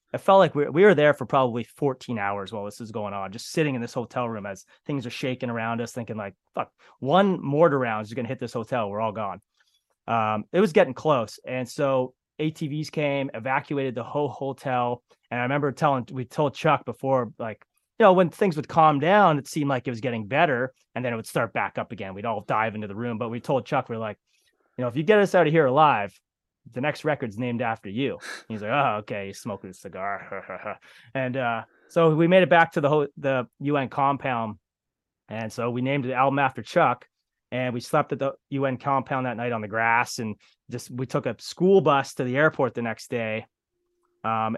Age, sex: 20-39, male